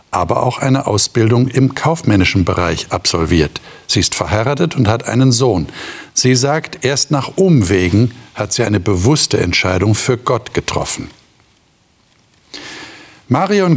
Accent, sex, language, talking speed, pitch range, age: German, male, German, 125 wpm, 105-135 Hz, 60-79